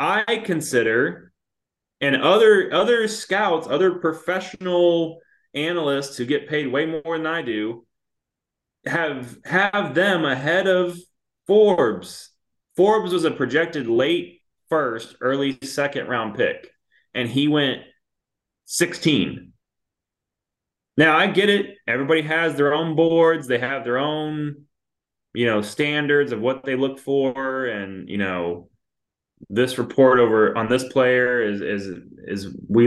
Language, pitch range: English, 115-165 Hz